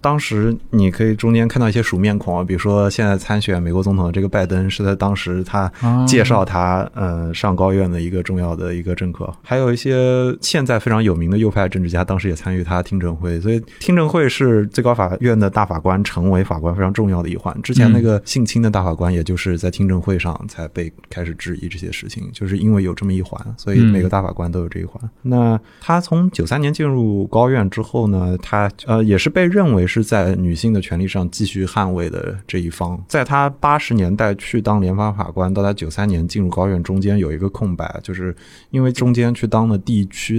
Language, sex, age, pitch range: Chinese, male, 20-39, 90-115 Hz